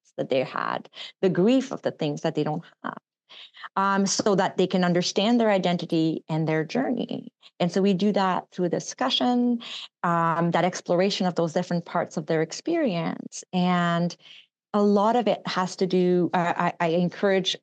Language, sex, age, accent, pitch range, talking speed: English, female, 30-49, American, 165-205 Hz, 175 wpm